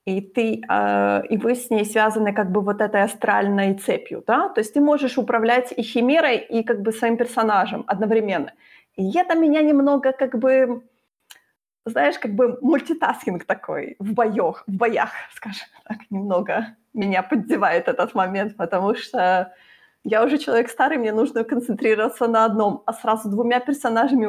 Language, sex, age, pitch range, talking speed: Ukrainian, female, 30-49, 200-250 Hz, 160 wpm